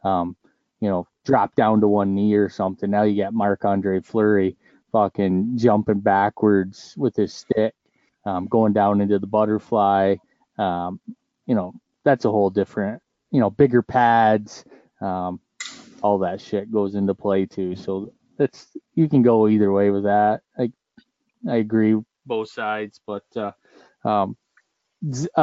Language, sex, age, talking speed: English, male, 20-39, 150 wpm